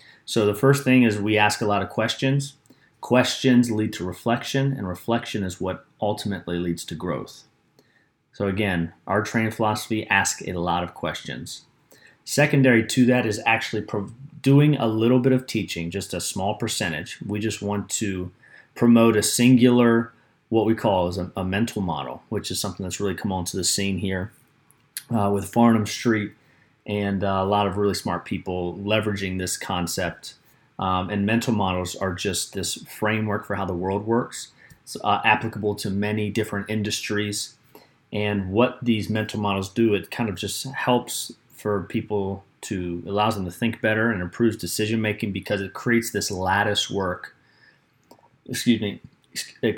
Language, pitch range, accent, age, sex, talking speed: English, 100-120 Hz, American, 30-49, male, 160 wpm